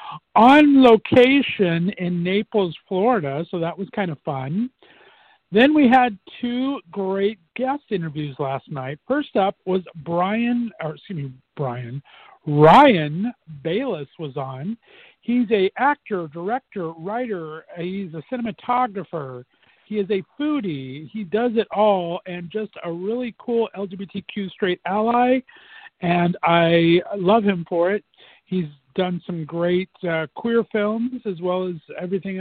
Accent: American